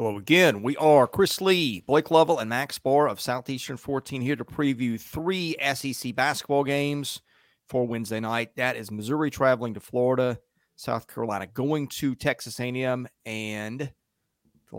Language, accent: English, American